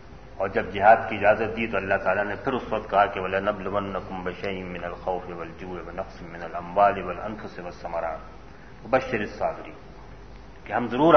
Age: 40-59